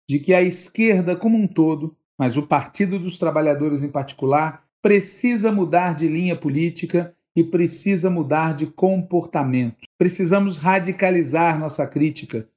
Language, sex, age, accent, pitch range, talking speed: Portuguese, male, 50-69, Brazilian, 135-180 Hz, 135 wpm